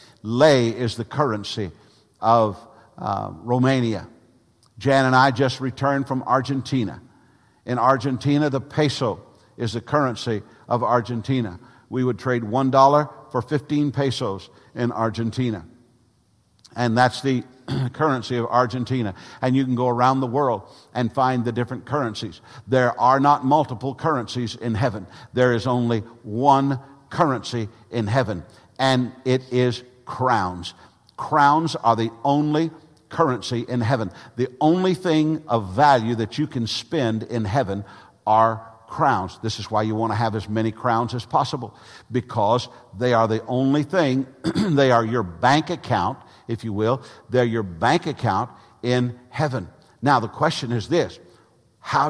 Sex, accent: male, American